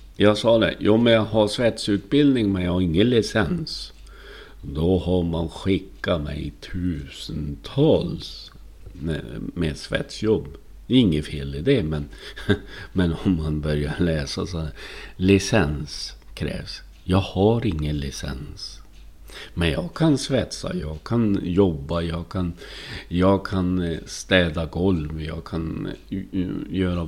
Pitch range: 80-100 Hz